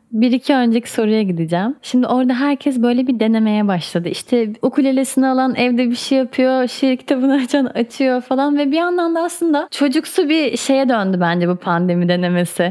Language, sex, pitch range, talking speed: Turkish, female, 205-275 Hz, 175 wpm